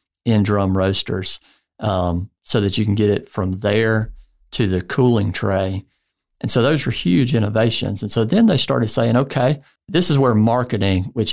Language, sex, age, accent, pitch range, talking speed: English, male, 50-69, American, 105-125 Hz, 180 wpm